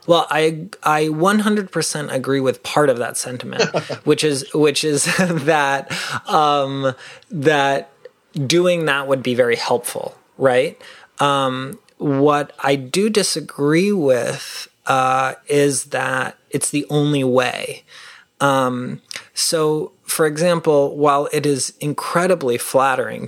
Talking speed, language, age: 120 wpm, English, 30-49